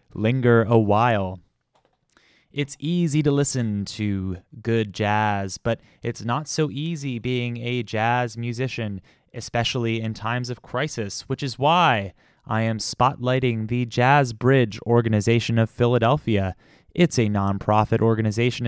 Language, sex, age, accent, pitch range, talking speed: English, male, 20-39, American, 105-130 Hz, 130 wpm